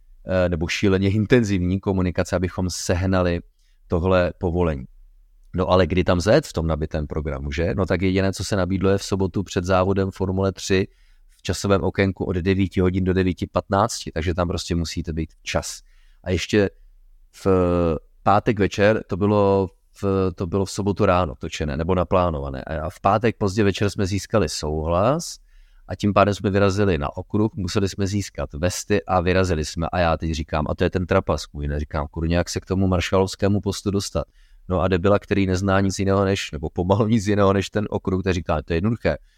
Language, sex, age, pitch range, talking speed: Czech, male, 30-49, 85-100 Hz, 185 wpm